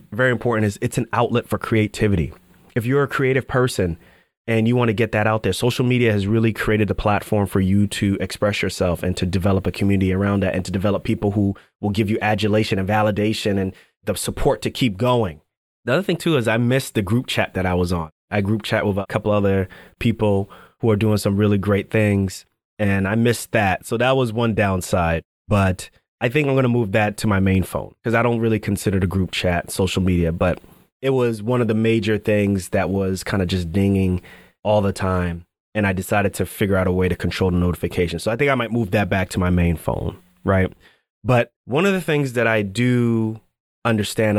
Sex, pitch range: male, 95-115 Hz